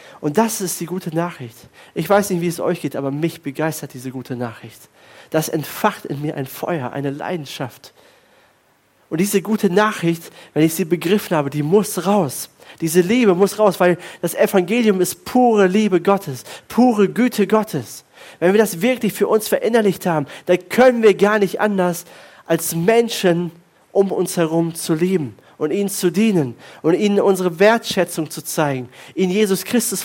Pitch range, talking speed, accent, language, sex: 165-210 Hz, 175 wpm, German, German, male